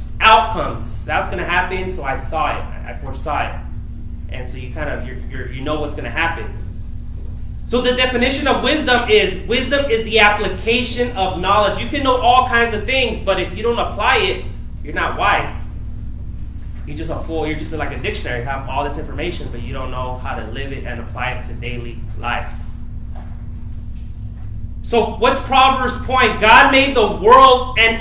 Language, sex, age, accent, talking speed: English, male, 20-39, American, 195 wpm